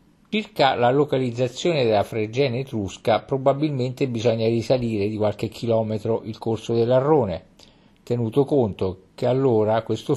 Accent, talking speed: native, 120 wpm